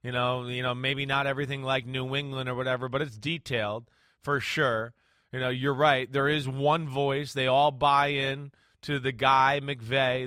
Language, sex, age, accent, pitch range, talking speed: English, male, 30-49, American, 135-160 Hz, 195 wpm